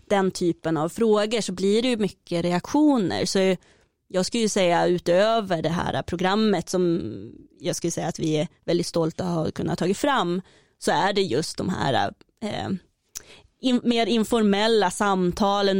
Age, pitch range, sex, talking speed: 20-39, 175-205 Hz, female, 160 wpm